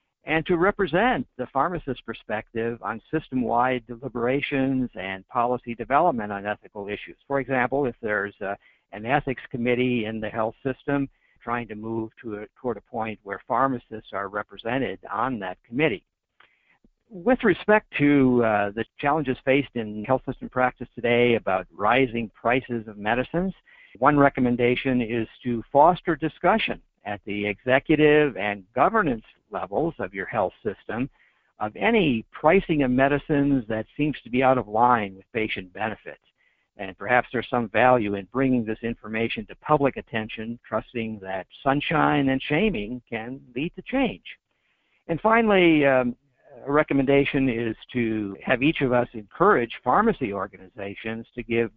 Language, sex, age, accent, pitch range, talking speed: English, male, 60-79, American, 110-140 Hz, 145 wpm